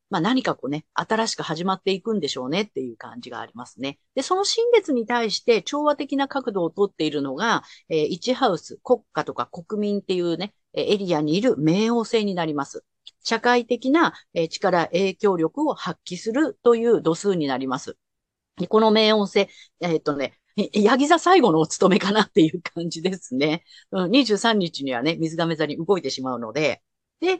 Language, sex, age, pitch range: Japanese, female, 40-59, 155-260 Hz